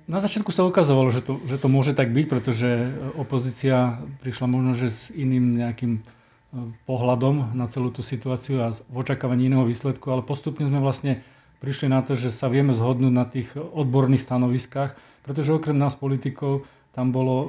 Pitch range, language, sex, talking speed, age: 125-135 Hz, Slovak, male, 165 wpm, 40-59